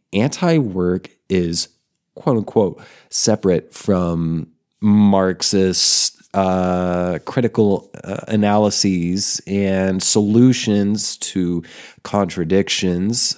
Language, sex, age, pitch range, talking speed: English, male, 30-49, 90-110 Hz, 65 wpm